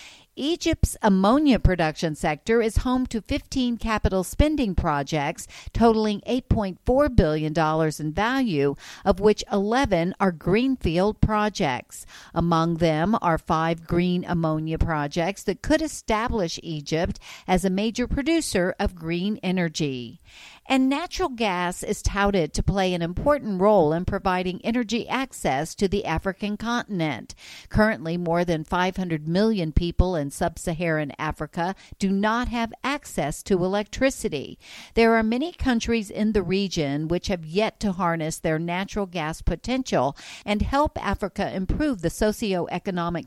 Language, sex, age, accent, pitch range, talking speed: English, female, 50-69, American, 165-225 Hz, 130 wpm